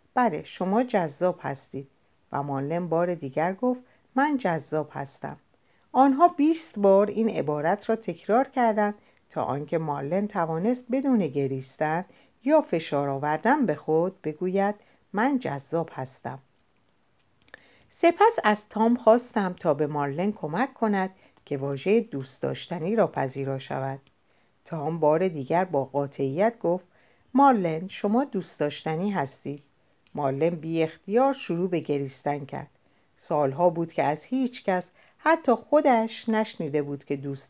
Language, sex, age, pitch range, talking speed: Persian, female, 50-69, 145-225 Hz, 130 wpm